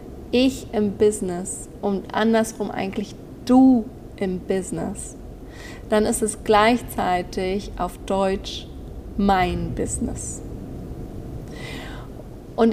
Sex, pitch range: female, 200-230 Hz